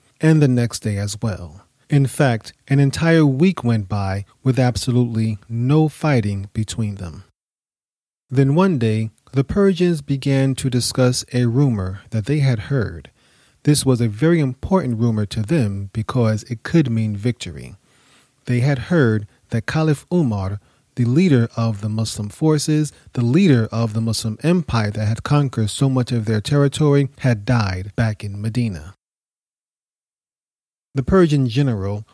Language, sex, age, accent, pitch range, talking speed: English, male, 30-49, American, 110-140 Hz, 150 wpm